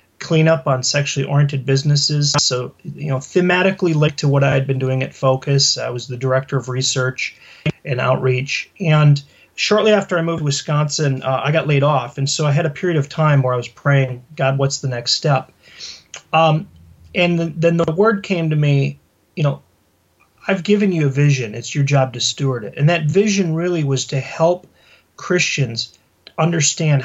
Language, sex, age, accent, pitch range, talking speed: English, male, 30-49, American, 130-155 Hz, 190 wpm